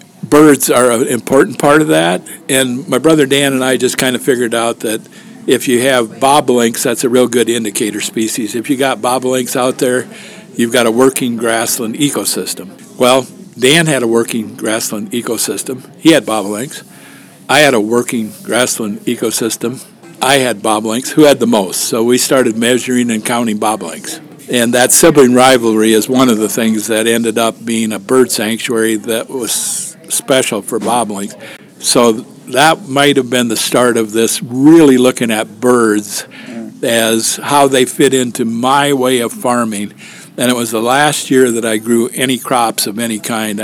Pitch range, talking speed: 115-130 Hz, 175 wpm